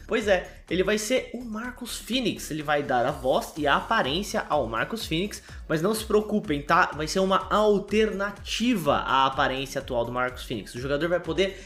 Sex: male